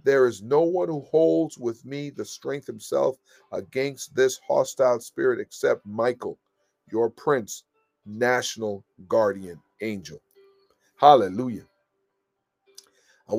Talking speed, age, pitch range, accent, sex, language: 110 wpm, 50-69, 120-175 Hz, American, male, English